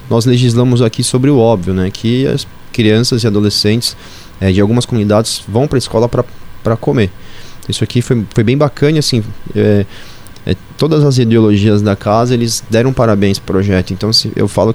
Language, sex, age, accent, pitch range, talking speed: Portuguese, male, 20-39, Brazilian, 105-130 Hz, 185 wpm